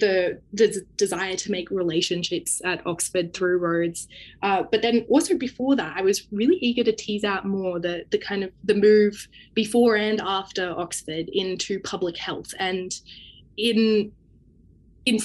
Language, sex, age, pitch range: English, female, 20-39, 185-220 Hz